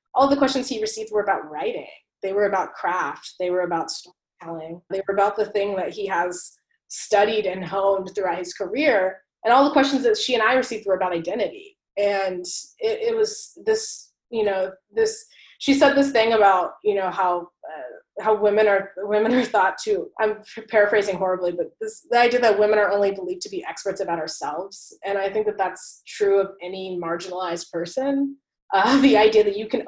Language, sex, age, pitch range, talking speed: English, female, 20-39, 185-260 Hz, 200 wpm